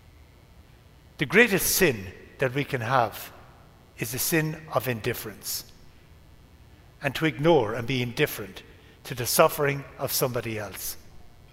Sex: male